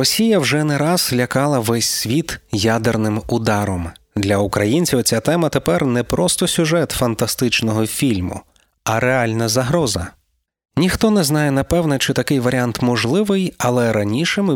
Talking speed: 135 wpm